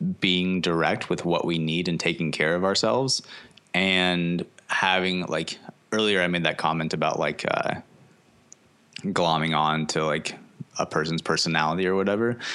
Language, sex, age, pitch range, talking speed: English, male, 20-39, 80-105 Hz, 150 wpm